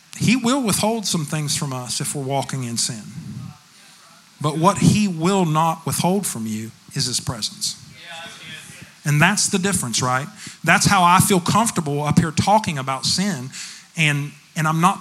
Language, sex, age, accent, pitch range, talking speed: English, male, 40-59, American, 145-195 Hz, 170 wpm